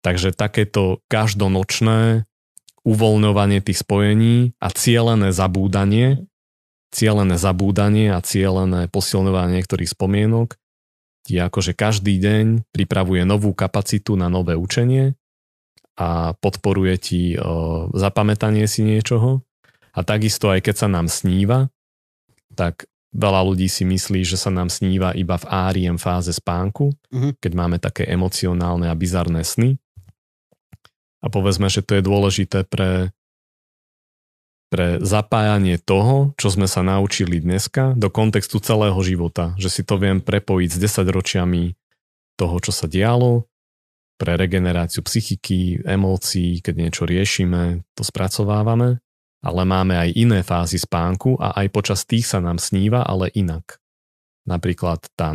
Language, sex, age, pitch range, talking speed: Slovak, male, 30-49, 90-105 Hz, 125 wpm